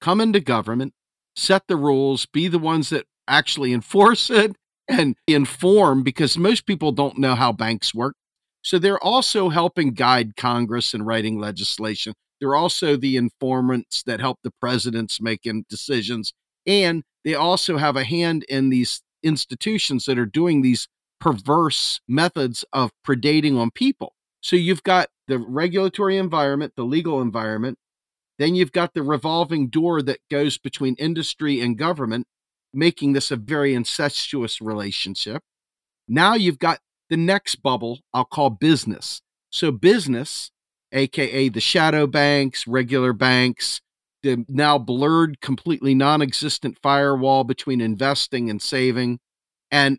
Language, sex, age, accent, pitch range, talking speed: English, male, 50-69, American, 125-160 Hz, 140 wpm